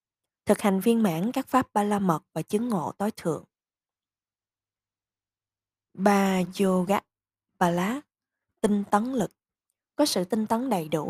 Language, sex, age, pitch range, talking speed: Vietnamese, female, 20-39, 170-230 Hz, 140 wpm